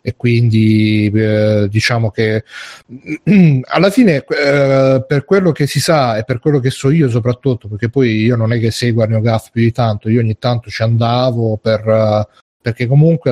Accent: native